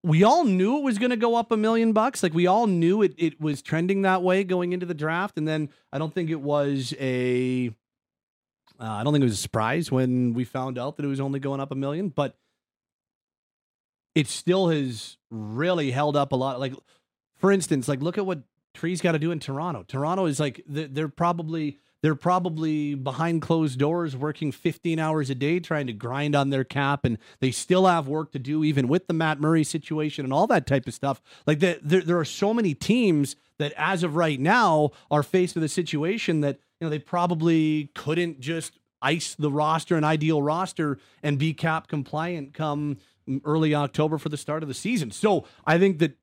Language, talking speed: English, 215 wpm